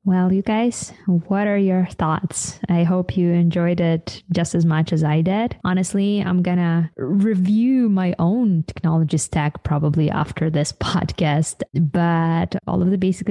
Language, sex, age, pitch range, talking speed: English, female, 20-39, 155-185 Hz, 160 wpm